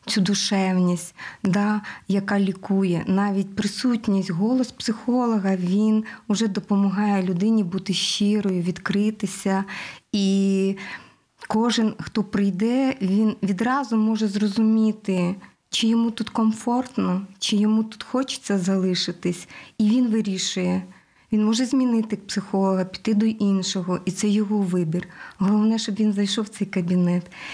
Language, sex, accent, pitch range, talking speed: Ukrainian, female, native, 190-220 Hz, 120 wpm